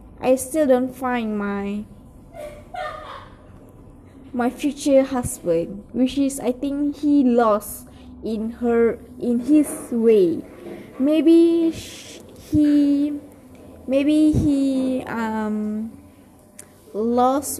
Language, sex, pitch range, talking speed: English, female, 230-285 Hz, 90 wpm